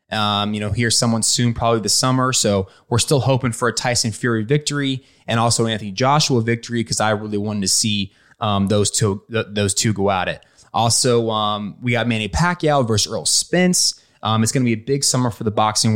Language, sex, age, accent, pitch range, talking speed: English, male, 20-39, American, 105-130 Hz, 220 wpm